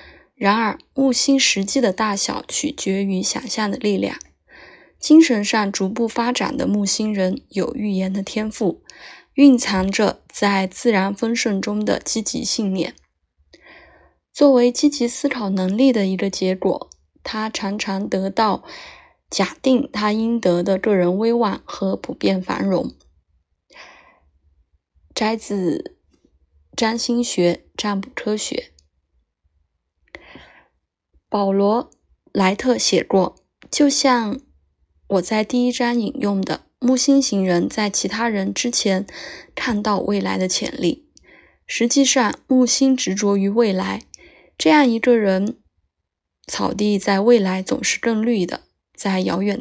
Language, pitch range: Chinese, 190-245 Hz